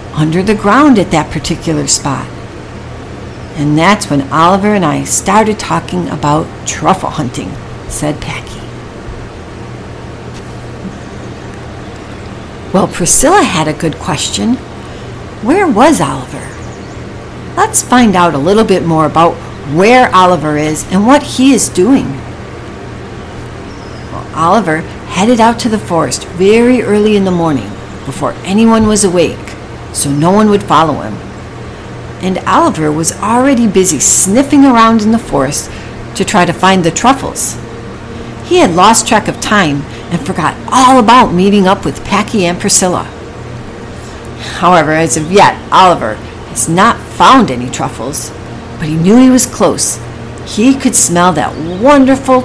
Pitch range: 150-220 Hz